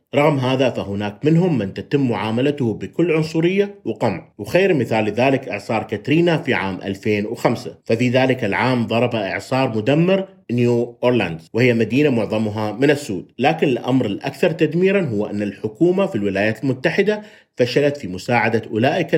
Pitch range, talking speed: 105-135 Hz, 140 wpm